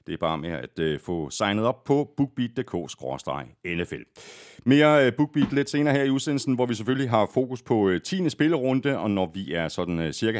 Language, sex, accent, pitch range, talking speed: Danish, male, native, 90-135 Hz, 180 wpm